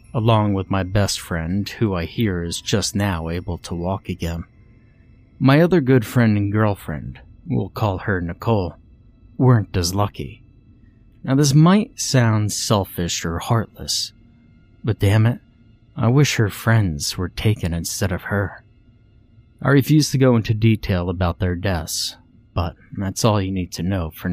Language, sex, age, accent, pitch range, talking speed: English, male, 30-49, American, 90-115 Hz, 160 wpm